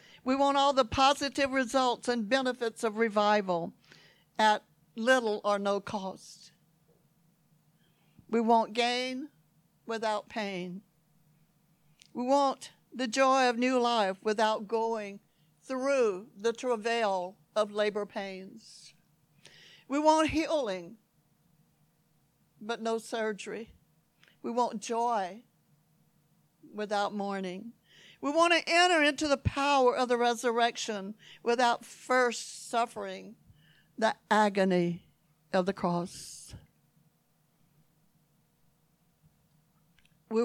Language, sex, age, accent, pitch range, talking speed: English, female, 60-79, American, 175-240 Hz, 95 wpm